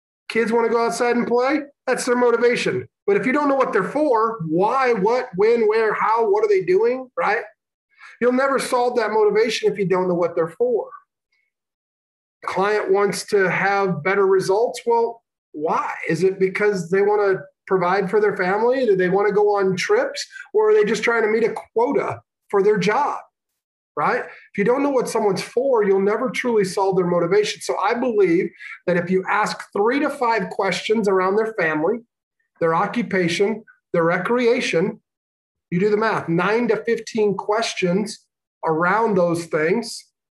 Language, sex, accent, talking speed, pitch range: English, male, American, 180 wpm, 195-255 Hz